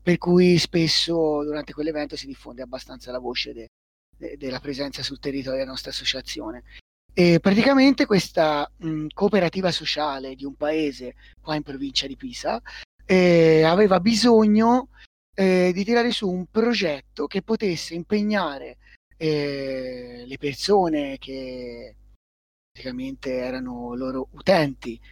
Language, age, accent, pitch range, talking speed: Italian, 30-49, native, 140-195 Hz, 115 wpm